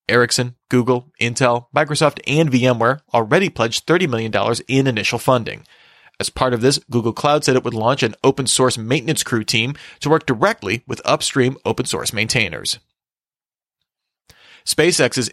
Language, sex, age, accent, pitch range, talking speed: English, male, 30-49, American, 115-140 Hz, 140 wpm